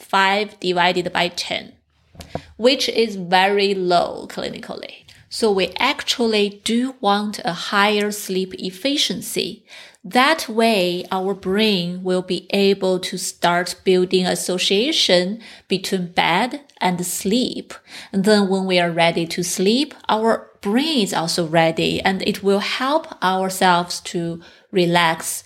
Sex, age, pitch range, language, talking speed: female, 30-49, 185-225 Hz, English, 125 wpm